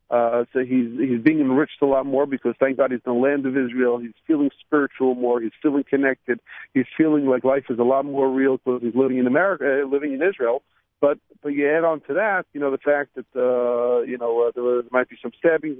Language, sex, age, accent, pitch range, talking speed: English, male, 50-69, American, 125-150 Hz, 245 wpm